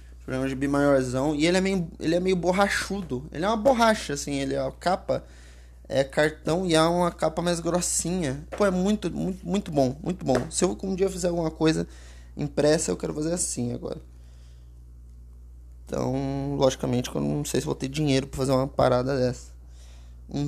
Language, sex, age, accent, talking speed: Portuguese, male, 20-39, Brazilian, 190 wpm